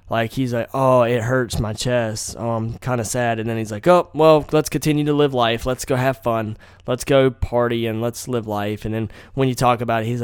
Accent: American